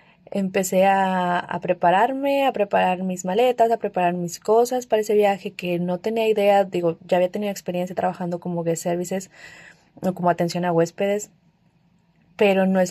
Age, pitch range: 20-39, 180-210 Hz